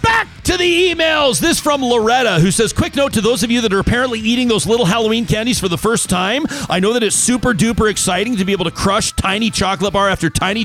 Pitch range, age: 185-240 Hz, 40-59